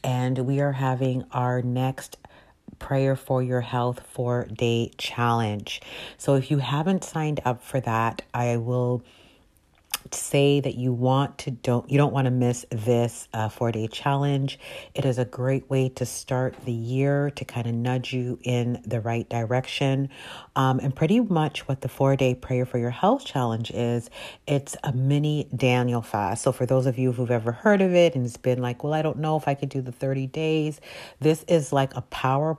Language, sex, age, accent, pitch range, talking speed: English, female, 40-59, American, 120-135 Hz, 195 wpm